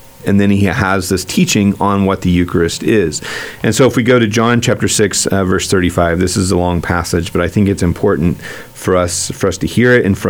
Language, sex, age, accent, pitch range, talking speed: English, male, 40-59, American, 90-120 Hz, 245 wpm